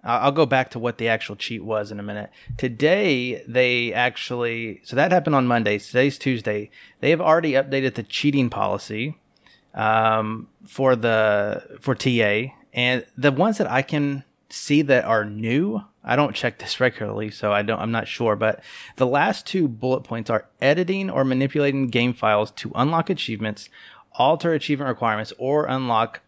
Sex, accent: male, American